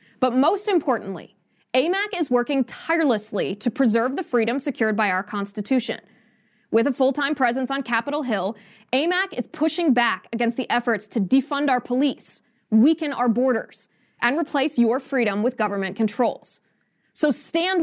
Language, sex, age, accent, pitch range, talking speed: English, female, 20-39, American, 220-280 Hz, 150 wpm